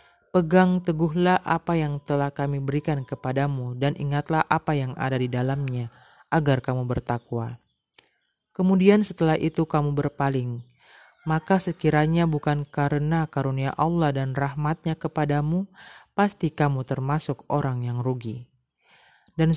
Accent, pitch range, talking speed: native, 135-165 Hz, 120 wpm